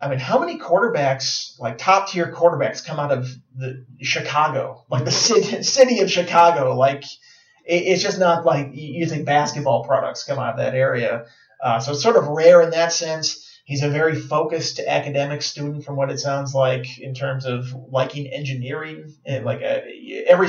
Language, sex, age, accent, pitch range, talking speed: English, male, 30-49, American, 130-155 Hz, 180 wpm